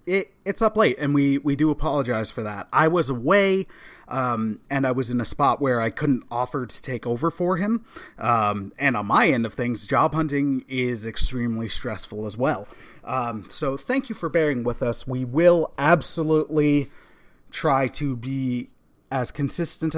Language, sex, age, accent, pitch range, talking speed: English, male, 30-49, American, 125-170 Hz, 175 wpm